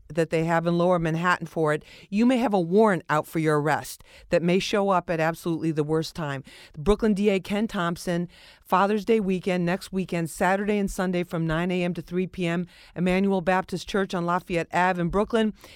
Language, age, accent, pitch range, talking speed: English, 40-59, American, 165-190 Hz, 200 wpm